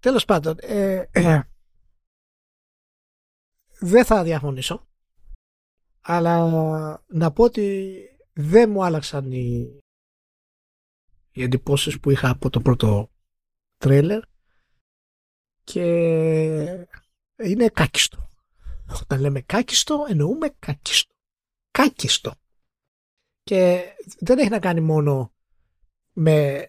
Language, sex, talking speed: Greek, male, 90 wpm